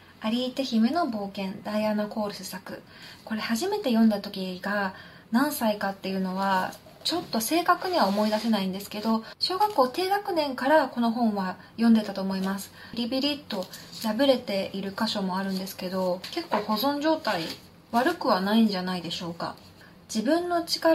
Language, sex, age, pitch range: Japanese, female, 20-39, 200-270 Hz